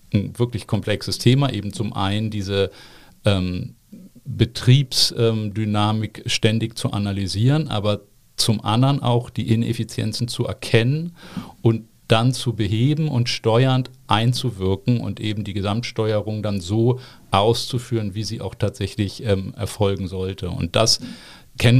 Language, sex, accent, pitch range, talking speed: German, male, German, 100-120 Hz, 120 wpm